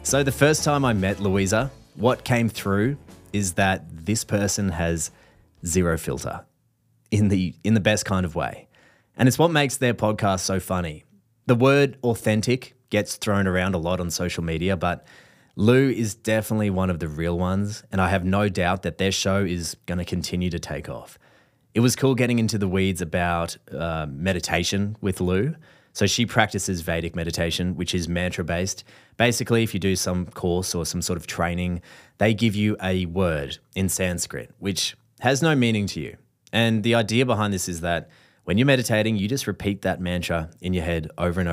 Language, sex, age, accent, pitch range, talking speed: English, male, 30-49, Australian, 90-115 Hz, 190 wpm